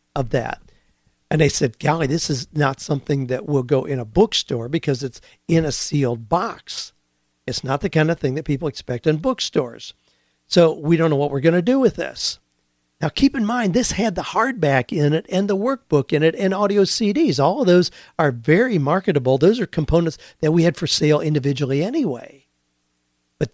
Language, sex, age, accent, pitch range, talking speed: English, male, 50-69, American, 140-180 Hz, 200 wpm